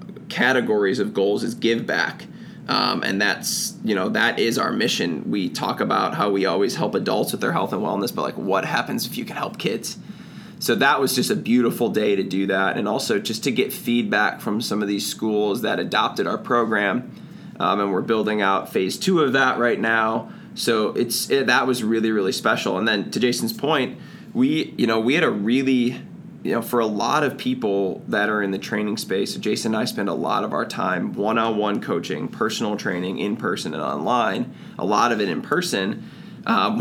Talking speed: 210 wpm